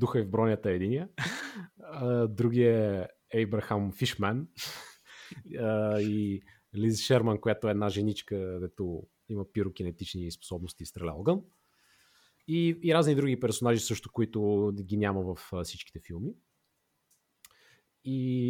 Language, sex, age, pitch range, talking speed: Bulgarian, male, 30-49, 105-125 Hz, 115 wpm